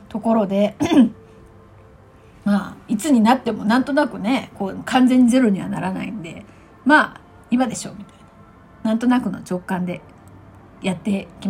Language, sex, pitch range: Japanese, female, 210-315 Hz